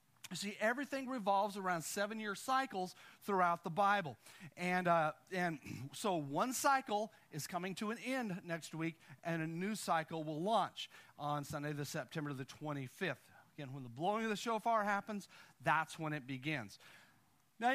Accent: American